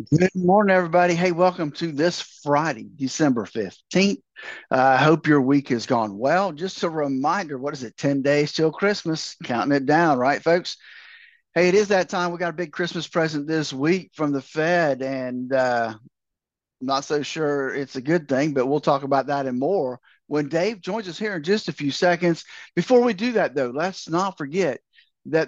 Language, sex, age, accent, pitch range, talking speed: English, male, 50-69, American, 135-175 Hz, 200 wpm